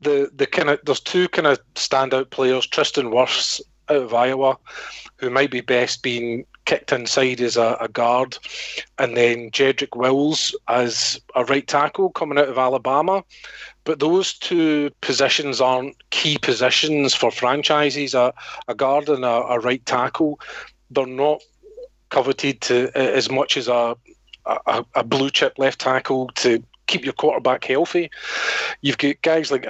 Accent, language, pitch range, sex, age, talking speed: British, English, 125-150 Hz, male, 40-59, 160 wpm